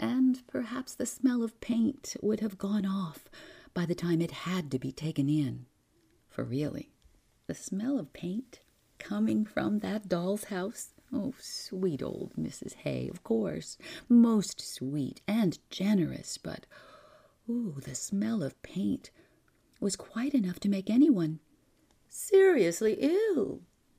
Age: 50-69